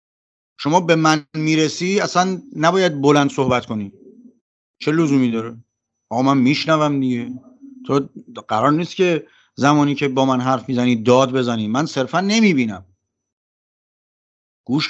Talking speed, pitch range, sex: 130 wpm, 145-215 Hz, male